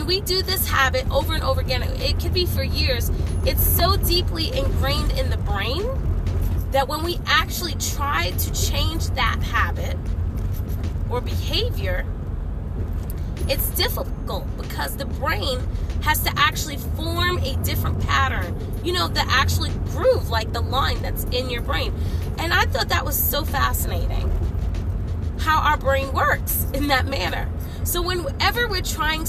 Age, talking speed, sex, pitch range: 20-39, 150 wpm, female, 85-90 Hz